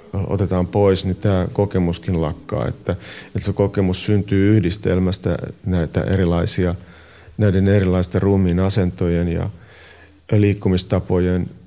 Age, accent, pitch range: 40-59, native, 90-105 Hz